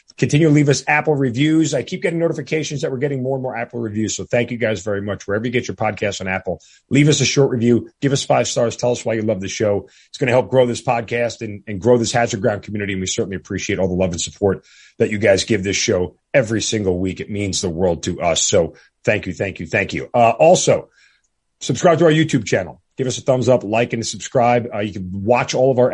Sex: male